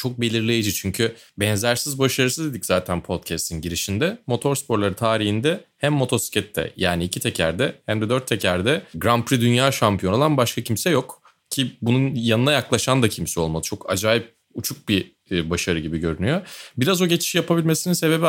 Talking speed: 155 wpm